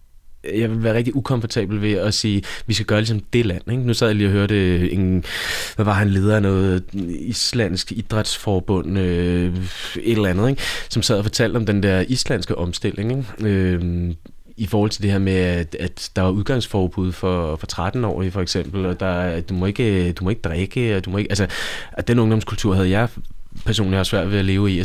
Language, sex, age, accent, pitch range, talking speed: Danish, male, 20-39, native, 95-115 Hz, 225 wpm